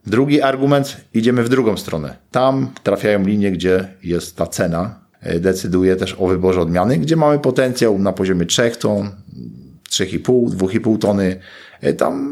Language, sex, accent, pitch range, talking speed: Polish, male, native, 90-105 Hz, 140 wpm